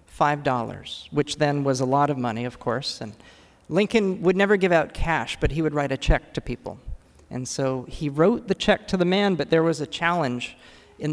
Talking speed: 210 wpm